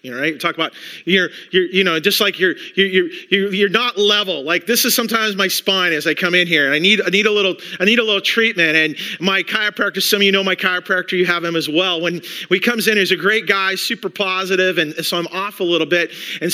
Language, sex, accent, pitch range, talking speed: English, male, American, 180-235 Hz, 265 wpm